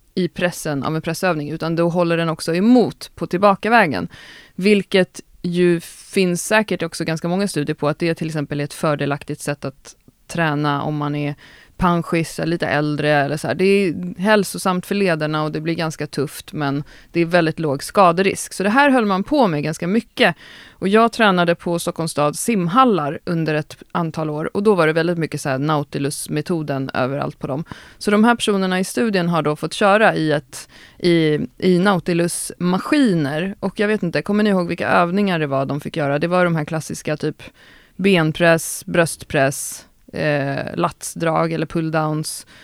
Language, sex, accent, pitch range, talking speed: Swedish, female, native, 150-190 Hz, 180 wpm